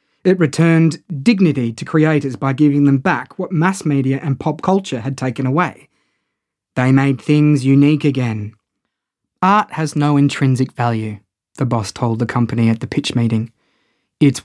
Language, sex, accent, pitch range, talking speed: English, male, Australian, 125-160 Hz, 160 wpm